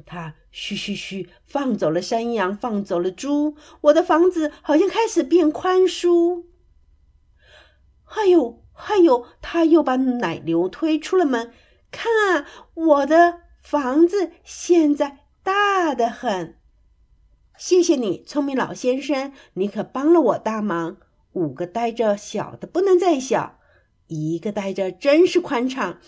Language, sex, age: Chinese, female, 50-69